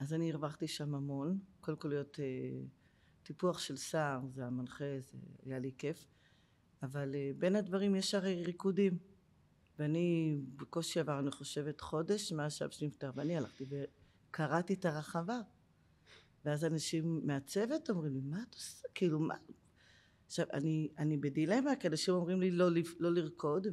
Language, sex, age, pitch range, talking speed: Hebrew, female, 40-59, 145-185 Hz, 150 wpm